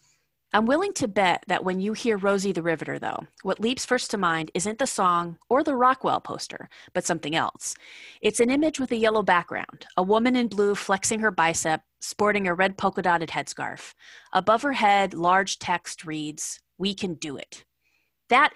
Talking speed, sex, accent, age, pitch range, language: 185 wpm, female, American, 30-49, 175-235 Hz, English